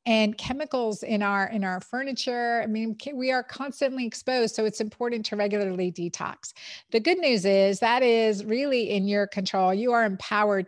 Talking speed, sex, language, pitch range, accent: 180 wpm, female, English, 195-230 Hz, American